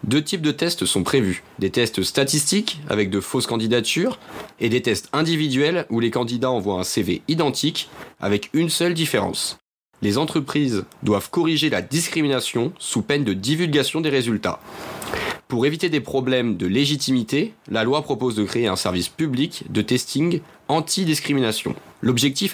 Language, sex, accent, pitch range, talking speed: French, male, French, 105-155 Hz, 155 wpm